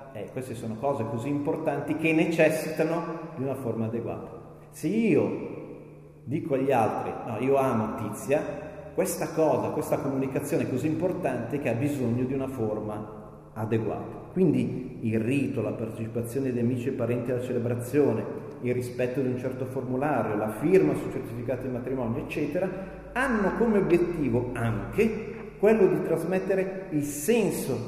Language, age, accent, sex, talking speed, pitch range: Italian, 40-59, native, male, 145 wpm, 120-160 Hz